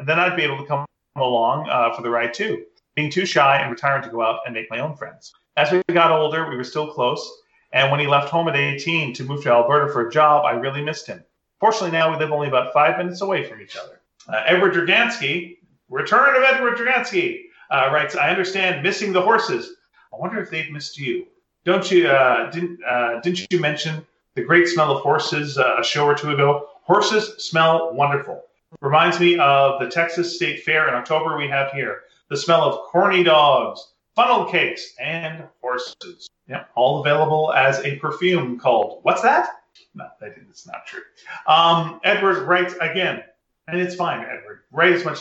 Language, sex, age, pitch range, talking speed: English, male, 40-59, 145-185 Hz, 205 wpm